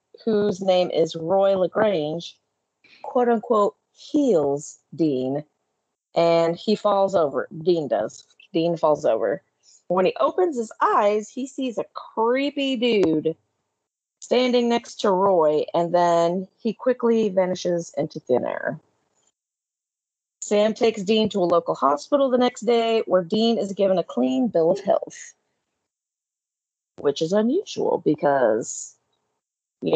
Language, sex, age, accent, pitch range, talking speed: English, female, 30-49, American, 175-255 Hz, 125 wpm